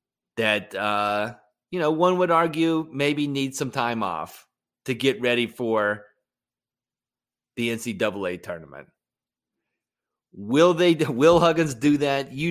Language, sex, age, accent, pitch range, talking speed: English, male, 30-49, American, 115-140 Hz, 125 wpm